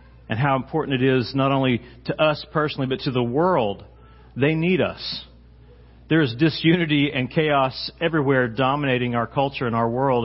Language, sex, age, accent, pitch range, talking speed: English, male, 40-59, American, 105-135 Hz, 170 wpm